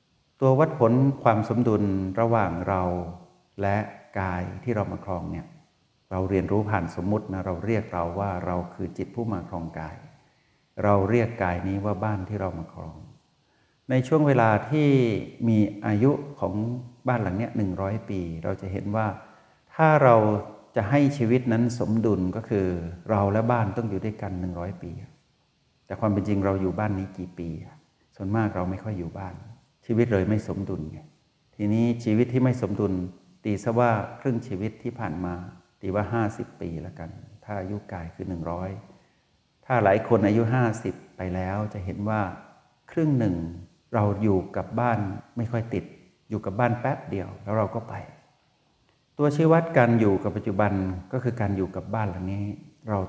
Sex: male